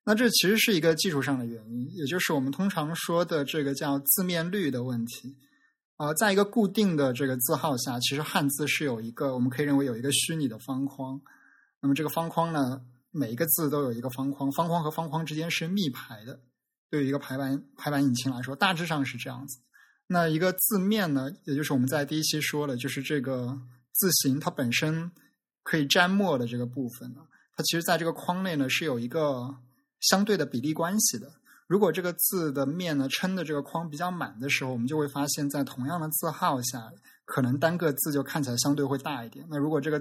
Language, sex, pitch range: Chinese, male, 130-165 Hz